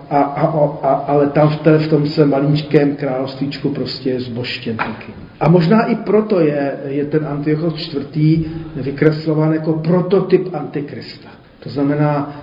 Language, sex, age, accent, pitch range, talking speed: Czech, male, 40-59, native, 135-160 Hz, 140 wpm